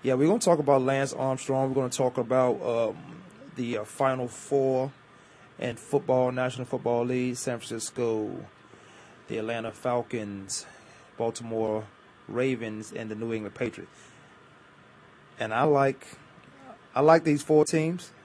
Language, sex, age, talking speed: English, male, 30-49, 135 wpm